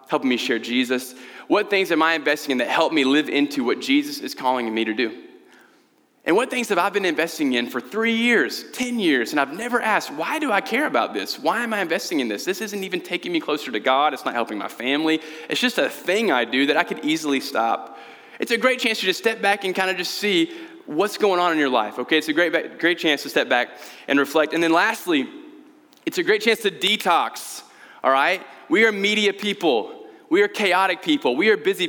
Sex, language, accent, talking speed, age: male, English, American, 240 wpm, 20-39